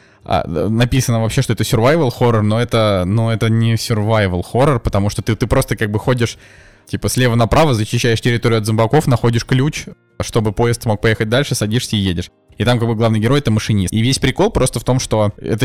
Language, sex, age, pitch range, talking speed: Russian, male, 20-39, 110-125 Hz, 210 wpm